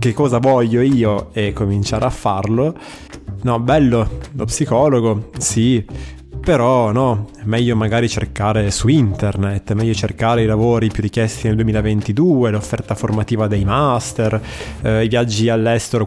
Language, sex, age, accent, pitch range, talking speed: Italian, male, 20-39, native, 110-130 Hz, 140 wpm